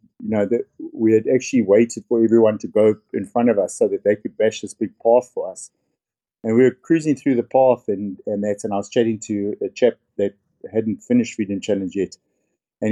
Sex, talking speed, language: male, 230 wpm, English